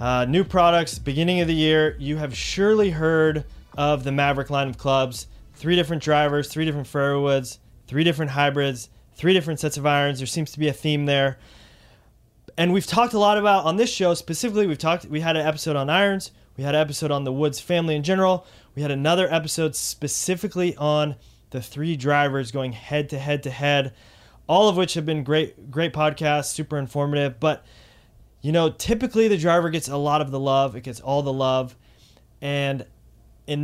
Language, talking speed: English, 200 wpm